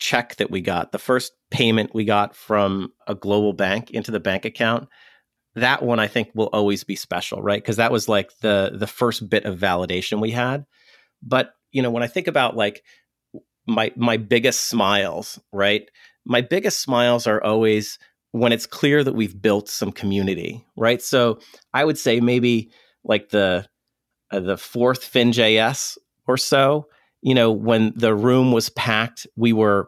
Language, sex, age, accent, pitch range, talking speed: English, male, 40-59, American, 110-125 Hz, 175 wpm